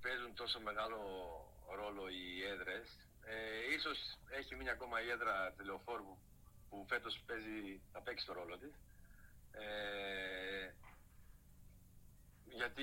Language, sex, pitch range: Greek, male, 95-120 Hz